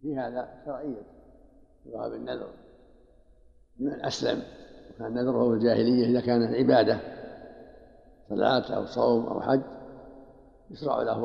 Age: 60-79